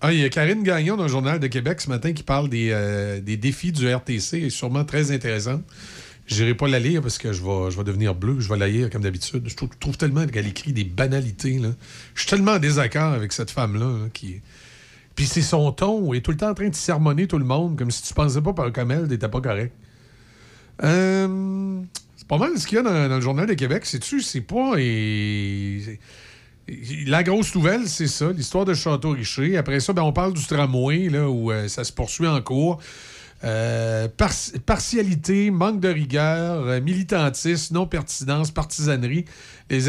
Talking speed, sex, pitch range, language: 210 wpm, male, 115-165 Hz, French